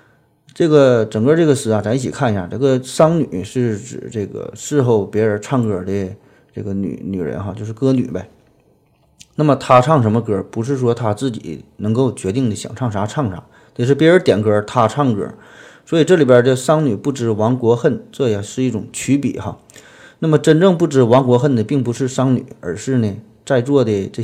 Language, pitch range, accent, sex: Chinese, 105-135 Hz, native, male